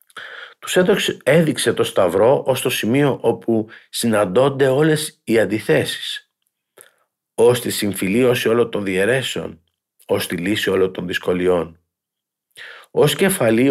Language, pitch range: Greek, 105-130 Hz